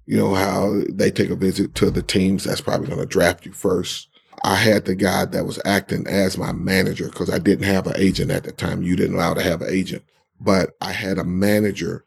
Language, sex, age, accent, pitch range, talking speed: English, male, 40-59, American, 90-100 Hz, 240 wpm